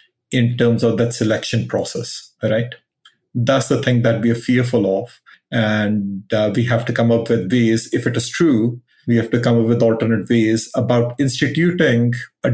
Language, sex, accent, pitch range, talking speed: Hindi, male, native, 115-135 Hz, 185 wpm